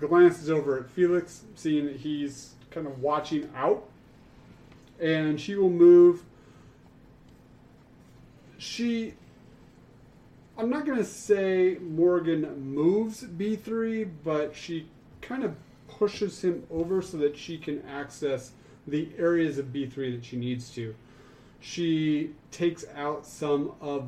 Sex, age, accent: male, 30-49, American